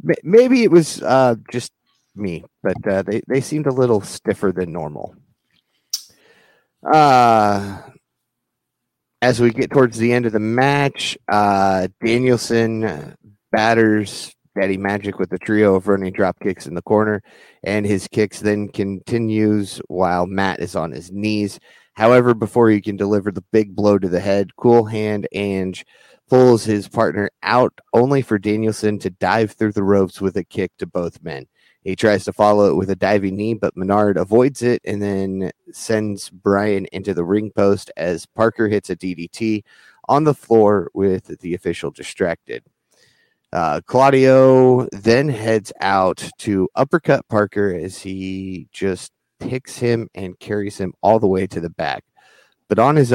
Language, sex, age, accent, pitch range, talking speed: English, male, 30-49, American, 95-115 Hz, 160 wpm